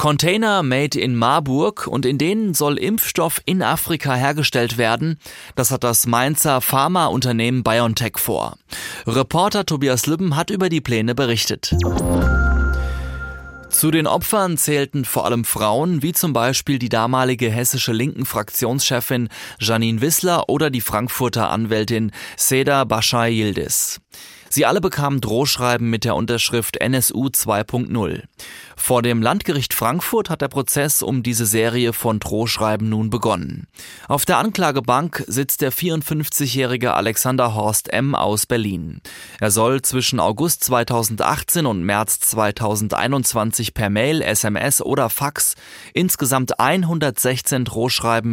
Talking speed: 125 wpm